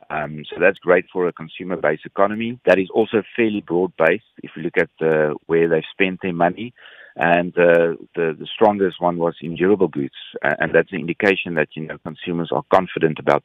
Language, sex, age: English, male, 50-69